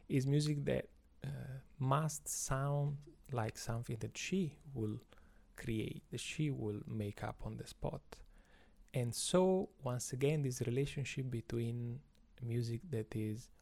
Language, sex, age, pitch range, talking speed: English, male, 30-49, 115-145 Hz, 130 wpm